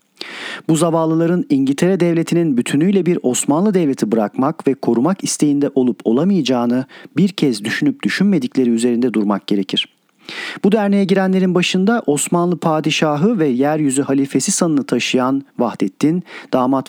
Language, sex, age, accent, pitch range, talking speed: Turkish, male, 40-59, native, 130-170 Hz, 120 wpm